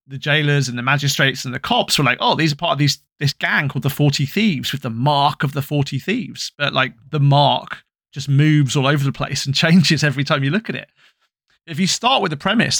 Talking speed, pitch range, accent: 250 wpm, 135-170 Hz, British